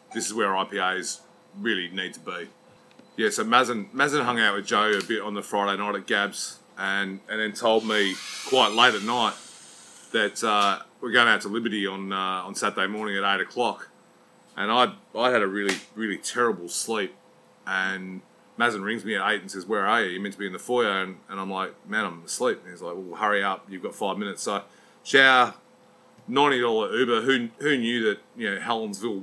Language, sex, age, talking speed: English, male, 30-49, 210 wpm